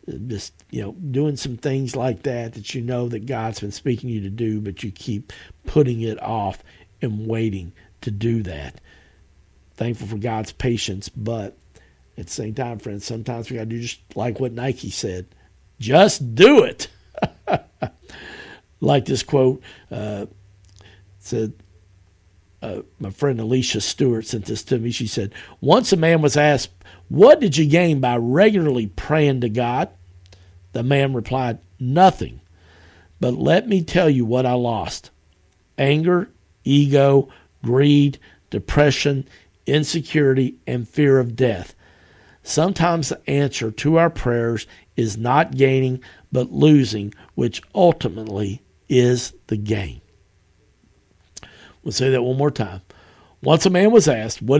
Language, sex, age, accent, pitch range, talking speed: English, male, 50-69, American, 100-140 Hz, 145 wpm